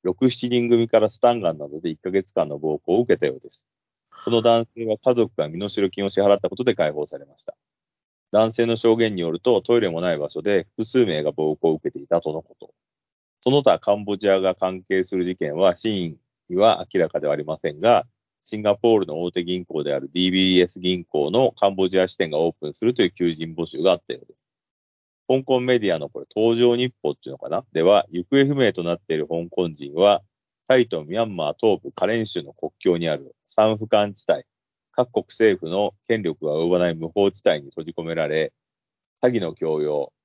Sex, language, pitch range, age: male, Japanese, 90-115 Hz, 40-59